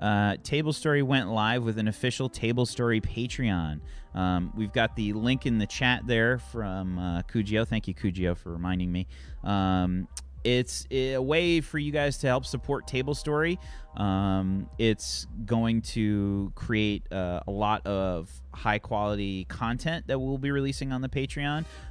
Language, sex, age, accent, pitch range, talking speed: English, male, 30-49, American, 95-125 Hz, 165 wpm